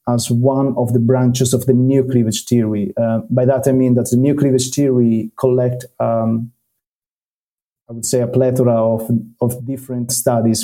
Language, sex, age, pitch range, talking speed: English, male, 30-49, 120-130 Hz, 175 wpm